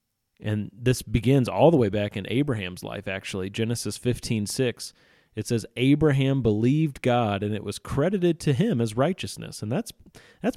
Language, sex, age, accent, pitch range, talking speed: English, male, 30-49, American, 110-140 Hz, 170 wpm